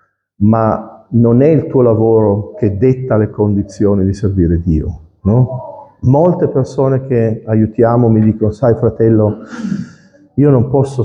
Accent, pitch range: native, 110-155 Hz